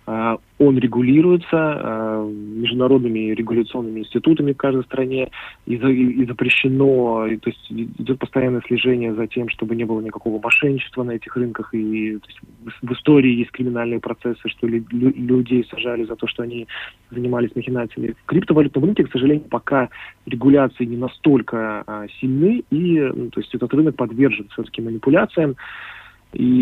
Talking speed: 155 wpm